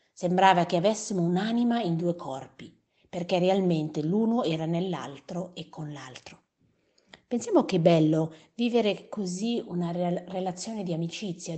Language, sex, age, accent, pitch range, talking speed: Italian, female, 50-69, native, 160-200 Hz, 130 wpm